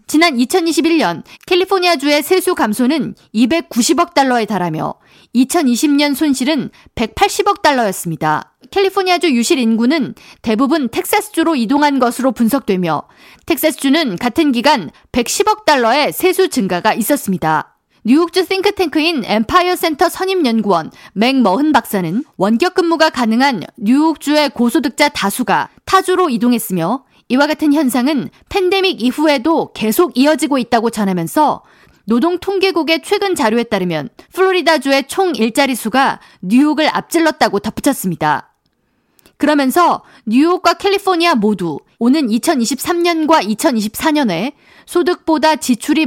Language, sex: Korean, female